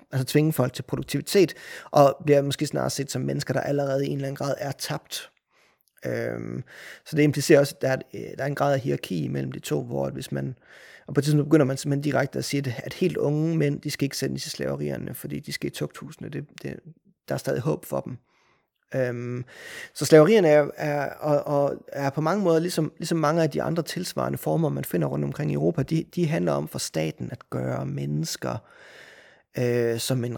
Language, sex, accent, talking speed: Danish, male, native, 215 wpm